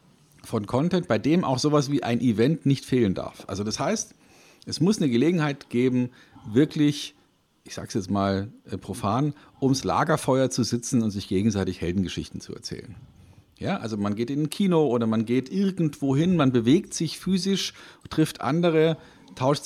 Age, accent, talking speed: 50-69, German, 170 wpm